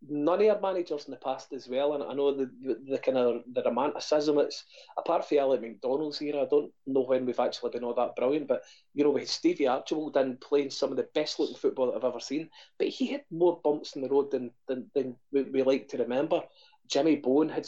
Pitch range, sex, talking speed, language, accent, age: 135-180 Hz, male, 245 wpm, English, British, 20-39